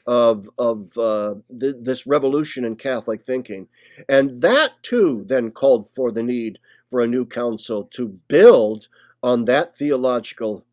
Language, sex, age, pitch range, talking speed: English, male, 50-69, 120-165 Hz, 140 wpm